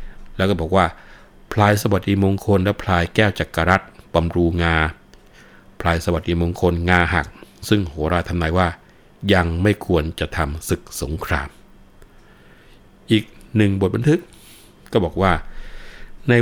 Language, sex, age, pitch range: Thai, male, 60-79, 80-100 Hz